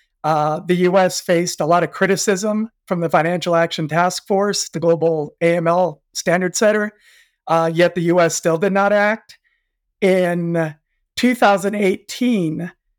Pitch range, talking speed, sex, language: 165-190 Hz, 135 wpm, male, English